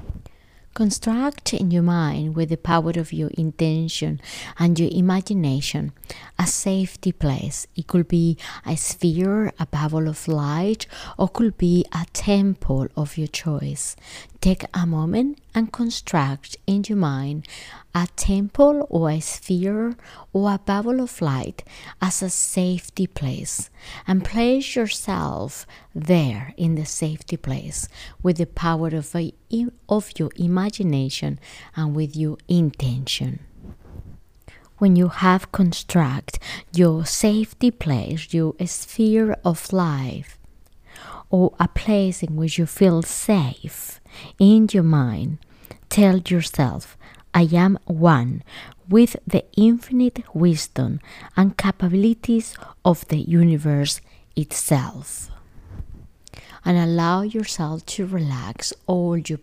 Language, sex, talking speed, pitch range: English, female, 120 wpm, 155-195 Hz